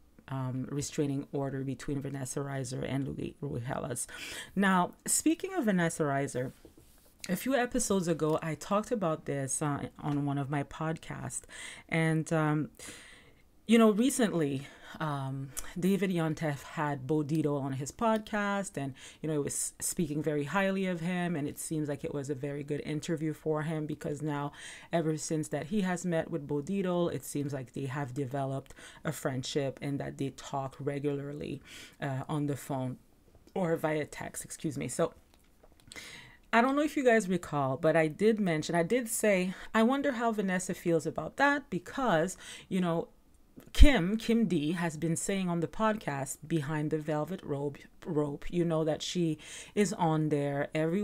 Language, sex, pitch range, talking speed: English, female, 145-180 Hz, 170 wpm